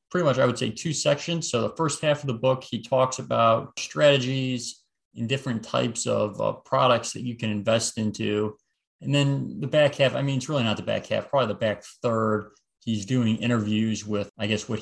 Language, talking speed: English, 215 wpm